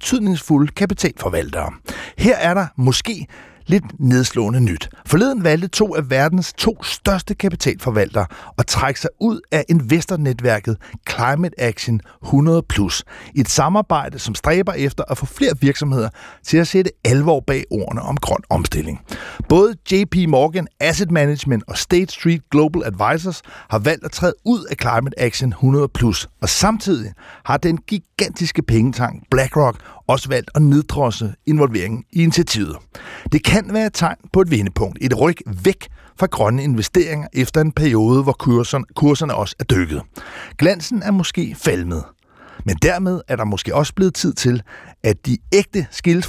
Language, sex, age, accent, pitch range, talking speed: Danish, male, 60-79, native, 120-170 Hz, 150 wpm